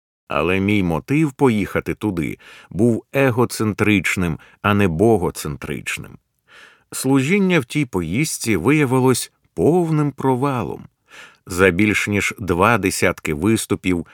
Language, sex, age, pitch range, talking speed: Ukrainian, male, 50-69, 95-130 Hz, 100 wpm